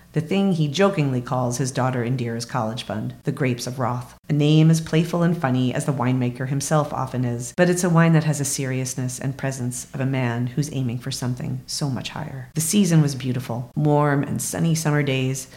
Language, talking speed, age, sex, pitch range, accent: English, 210 wpm, 40-59, female, 125-155 Hz, American